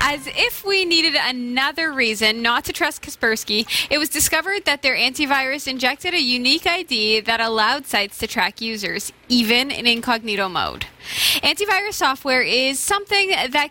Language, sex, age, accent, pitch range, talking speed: English, female, 20-39, American, 240-320 Hz, 155 wpm